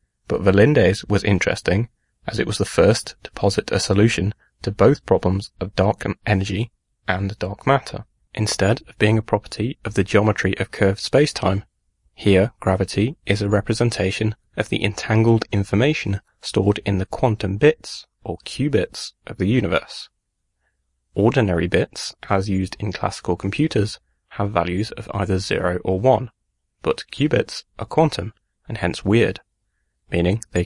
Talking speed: 145 wpm